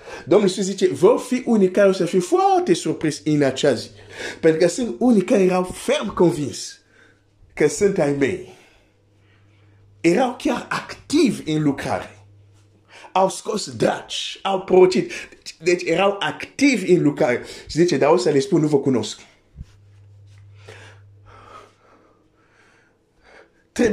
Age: 50-69